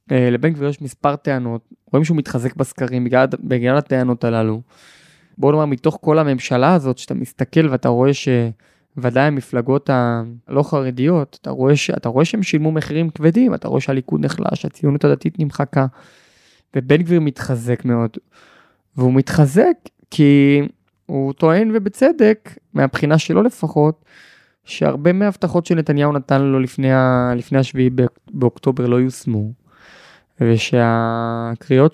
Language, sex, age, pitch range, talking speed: Hebrew, male, 20-39, 125-160 Hz, 125 wpm